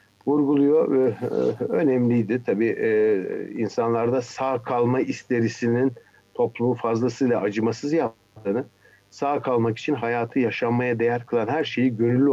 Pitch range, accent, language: 105-130 Hz, native, Turkish